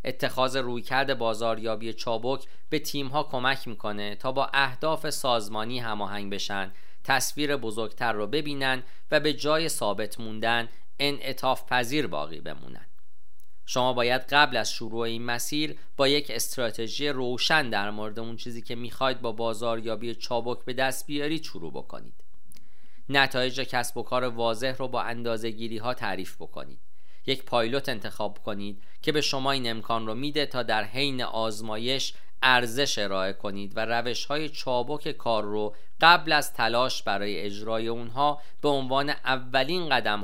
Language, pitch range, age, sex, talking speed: Persian, 110-135 Hz, 40-59, male, 145 wpm